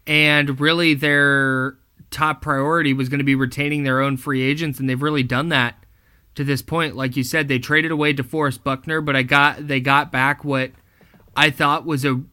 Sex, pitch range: male, 130-145 Hz